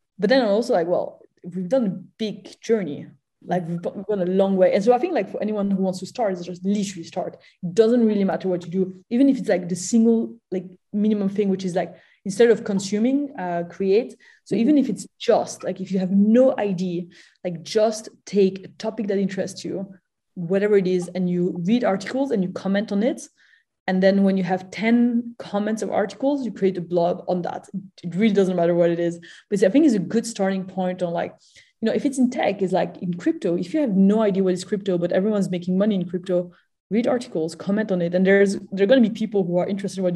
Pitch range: 180-215 Hz